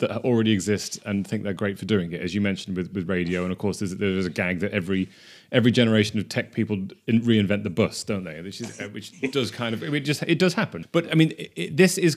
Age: 30-49